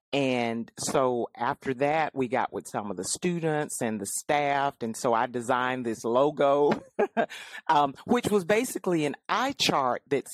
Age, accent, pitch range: 40-59, American, 125-155 Hz